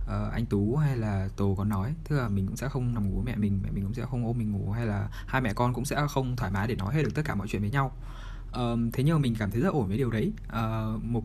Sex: male